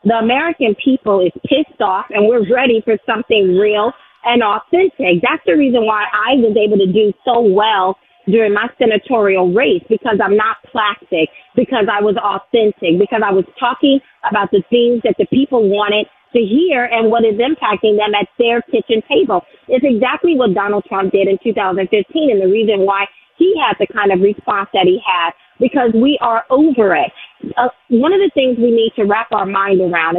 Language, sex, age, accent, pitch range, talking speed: English, female, 40-59, American, 200-240 Hz, 195 wpm